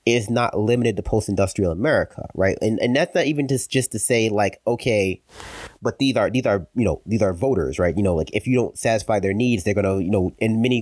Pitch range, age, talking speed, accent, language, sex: 95-115 Hz, 30-49, 245 wpm, American, English, male